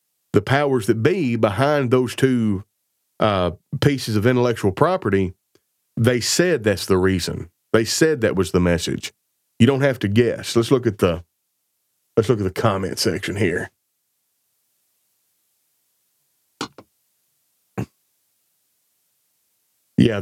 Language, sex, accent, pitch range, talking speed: English, male, American, 100-125 Hz, 120 wpm